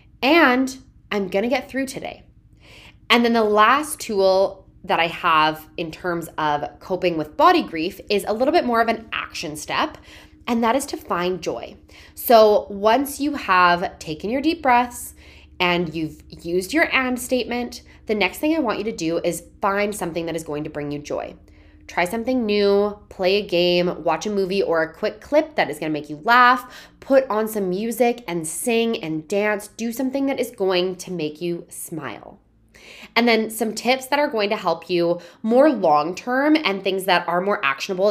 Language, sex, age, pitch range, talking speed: English, female, 20-39, 170-240 Hz, 190 wpm